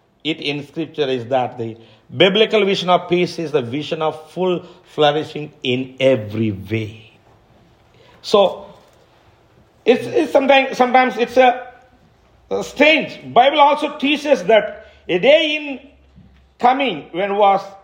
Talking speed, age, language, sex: 130 wpm, 50-69, English, male